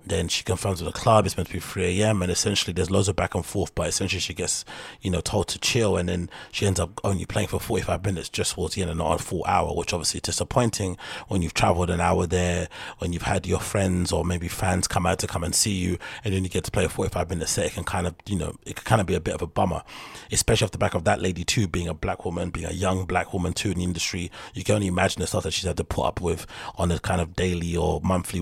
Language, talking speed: English, 295 wpm